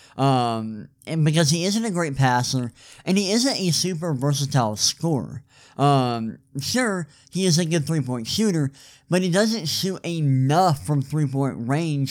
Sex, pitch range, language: male, 130-160 Hz, English